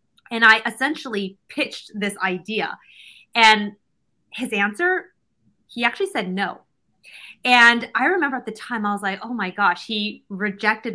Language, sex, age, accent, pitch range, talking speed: English, female, 20-39, American, 195-240 Hz, 150 wpm